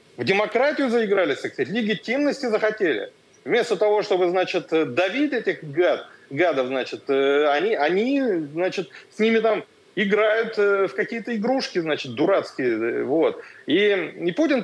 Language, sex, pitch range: Russian, male, 160-235 Hz